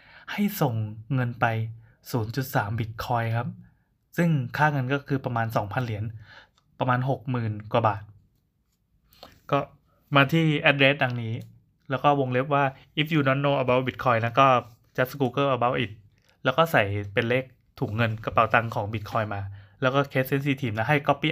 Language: Thai